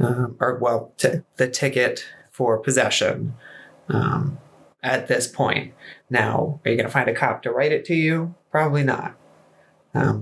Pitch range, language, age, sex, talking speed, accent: 120-140 Hz, English, 20-39, male, 160 wpm, American